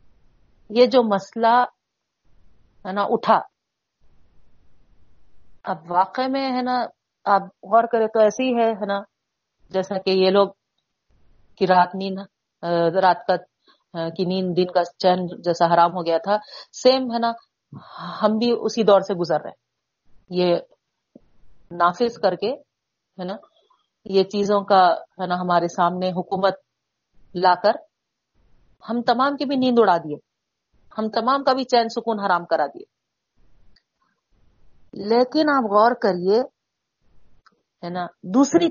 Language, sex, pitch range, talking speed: Urdu, female, 175-235 Hz, 125 wpm